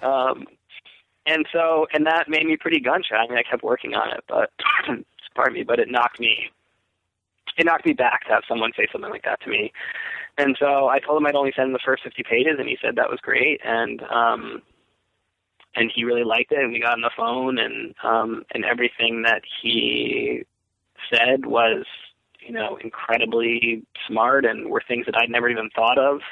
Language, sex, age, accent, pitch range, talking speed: English, male, 20-39, American, 115-140 Hz, 205 wpm